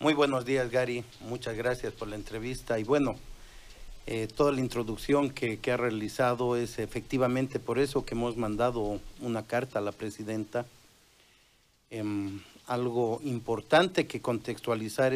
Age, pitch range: 50-69, 110-135 Hz